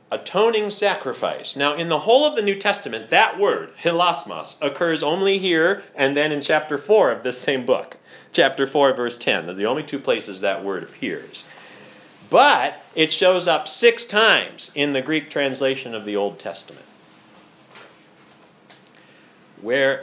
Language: English